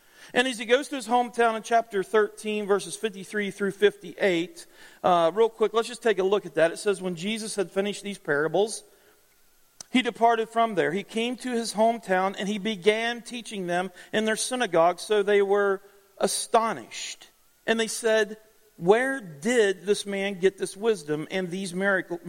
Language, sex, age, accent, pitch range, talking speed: English, male, 40-59, American, 175-220 Hz, 180 wpm